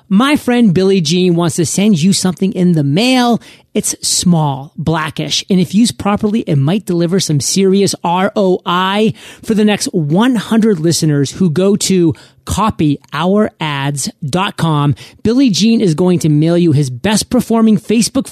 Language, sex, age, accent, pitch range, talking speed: English, male, 30-49, American, 165-215 Hz, 145 wpm